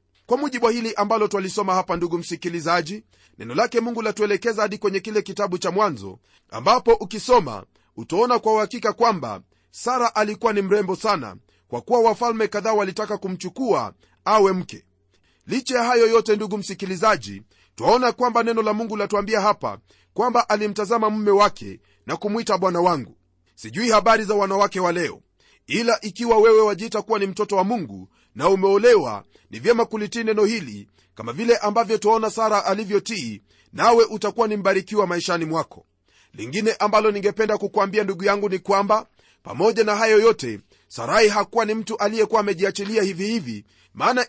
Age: 40-59